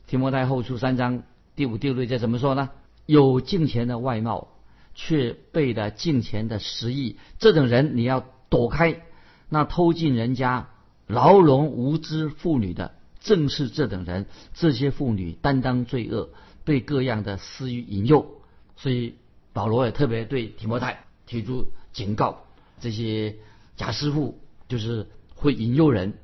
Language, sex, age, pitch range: Chinese, male, 50-69, 110-140 Hz